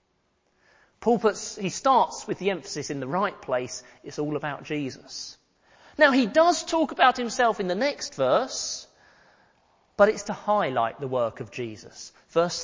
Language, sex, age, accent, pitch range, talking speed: English, male, 40-59, British, 135-230 Hz, 160 wpm